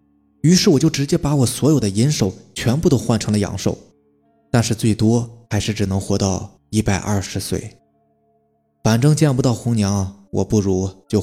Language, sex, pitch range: Chinese, male, 100-145 Hz